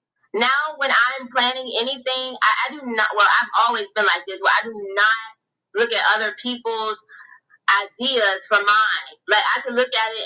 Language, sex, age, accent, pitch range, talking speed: English, female, 20-39, American, 220-270 Hz, 185 wpm